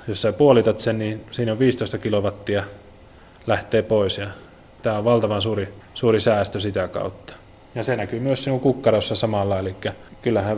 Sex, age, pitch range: male, 20-39, 105-120 Hz